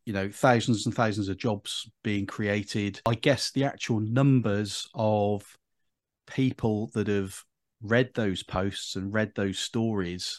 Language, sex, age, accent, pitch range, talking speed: English, male, 40-59, British, 105-125 Hz, 145 wpm